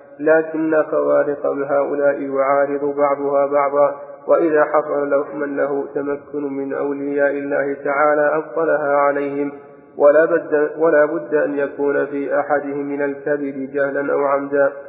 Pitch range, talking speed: 140-145 Hz, 125 wpm